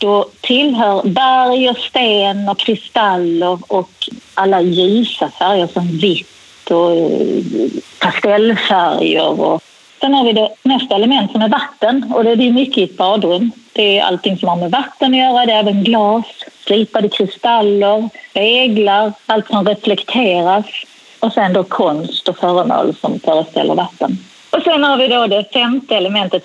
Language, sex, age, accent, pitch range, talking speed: Swedish, female, 30-49, native, 190-240 Hz, 150 wpm